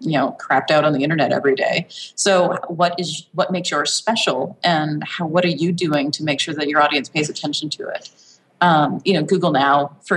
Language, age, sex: English, 30-49, female